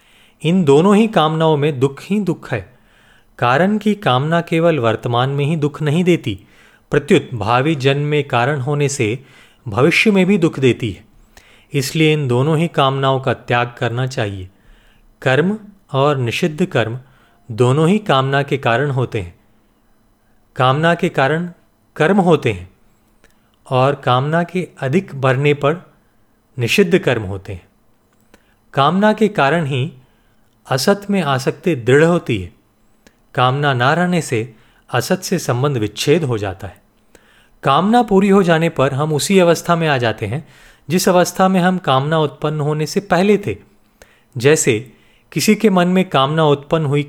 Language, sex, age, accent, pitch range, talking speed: Hindi, male, 40-59, native, 120-170 Hz, 155 wpm